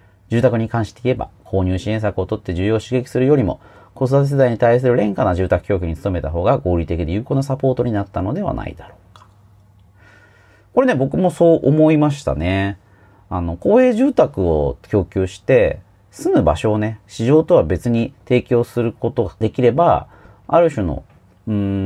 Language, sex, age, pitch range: Japanese, male, 40-59, 90-120 Hz